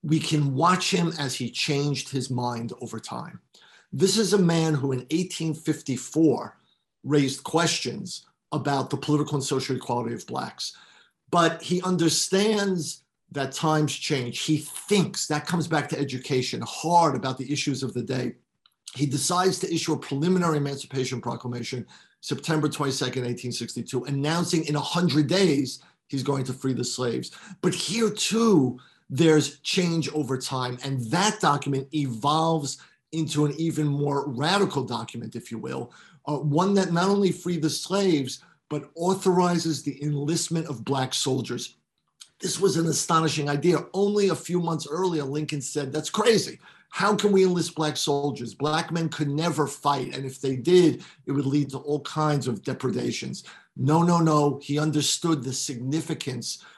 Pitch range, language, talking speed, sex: 135-170 Hz, English, 155 wpm, male